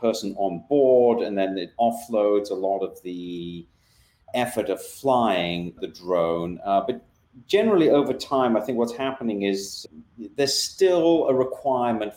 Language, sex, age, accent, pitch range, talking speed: English, male, 40-59, British, 95-125 Hz, 150 wpm